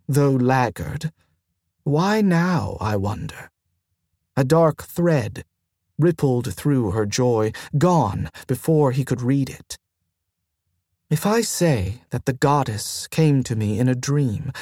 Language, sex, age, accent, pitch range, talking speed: English, male, 40-59, American, 100-155 Hz, 125 wpm